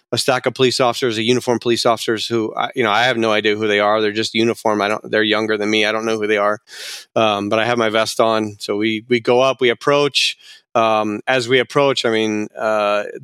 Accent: American